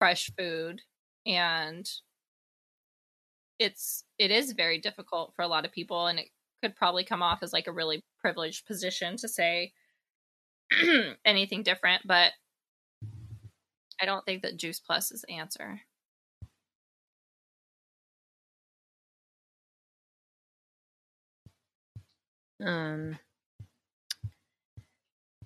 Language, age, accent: English, 20-39, American